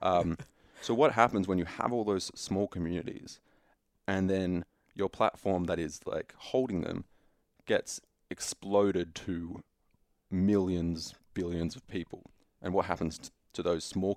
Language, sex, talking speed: English, male, 145 wpm